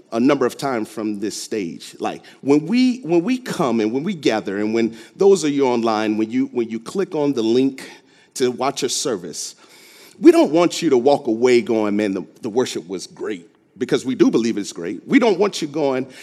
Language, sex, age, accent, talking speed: English, male, 40-59, American, 220 wpm